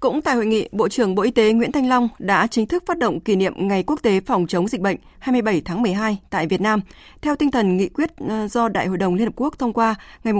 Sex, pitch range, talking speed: female, 190-250 Hz, 270 wpm